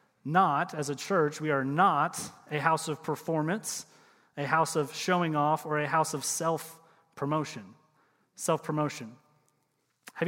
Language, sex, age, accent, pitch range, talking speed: English, male, 30-49, American, 150-190 Hz, 135 wpm